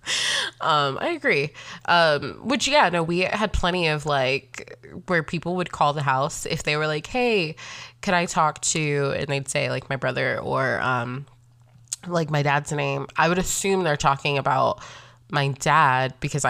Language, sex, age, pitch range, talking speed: English, female, 20-39, 135-160 Hz, 175 wpm